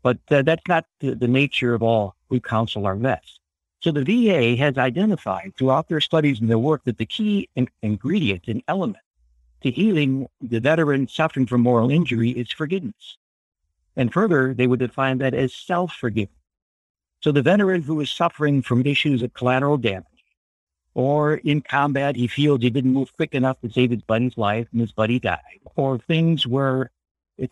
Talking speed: 180 wpm